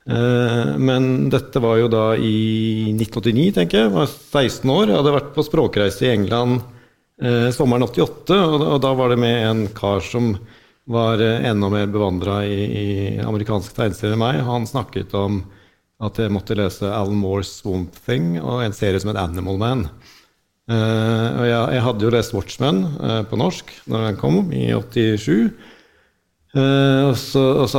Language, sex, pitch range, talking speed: English, male, 100-120 Hz, 180 wpm